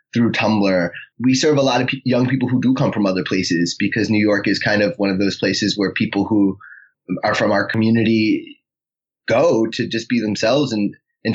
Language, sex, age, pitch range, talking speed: English, male, 20-39, 105-140 Hz, 210 wpm